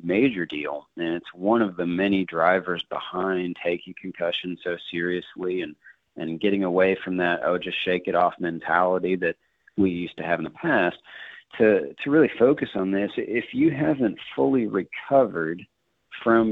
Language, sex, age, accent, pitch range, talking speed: English, male, 40-59, American, 90-105 Hz, 165 wpm